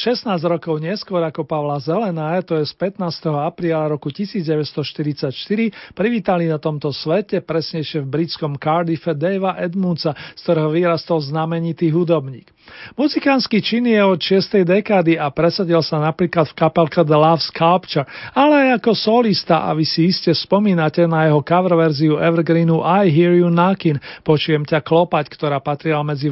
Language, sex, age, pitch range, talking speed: Slovak, male, 40-59, 155-190 Hz, 155 wpm